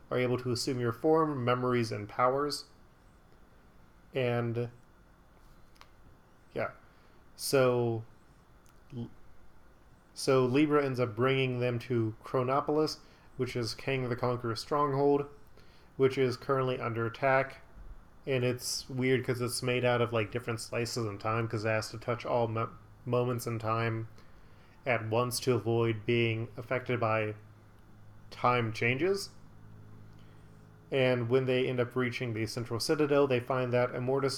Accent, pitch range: American, 115-130 Hz